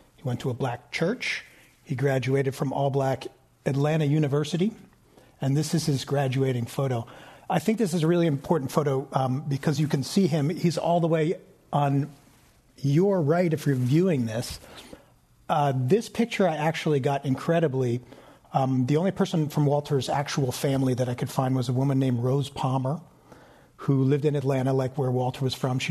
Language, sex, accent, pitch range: English, male, American, 135-165 Hz